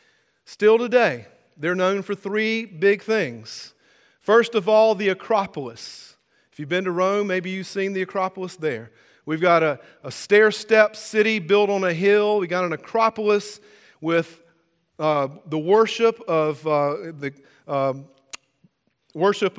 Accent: American